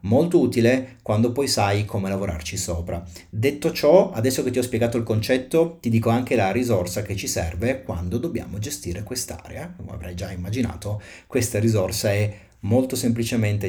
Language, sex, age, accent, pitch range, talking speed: Italian, male, 40-59, native, 95-130 Hz, 165 wpm